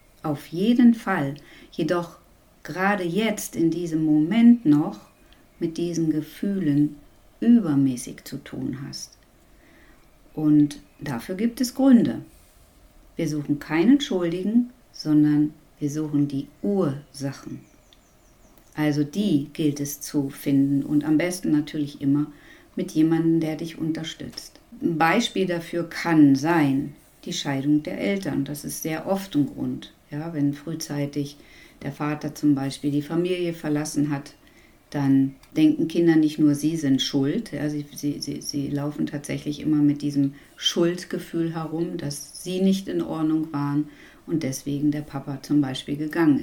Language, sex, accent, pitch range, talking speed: German, female, German, 145-170 Hz, 135 wpm